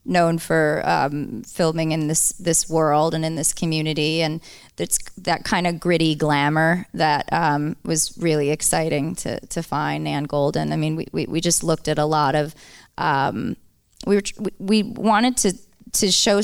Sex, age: female, 20-39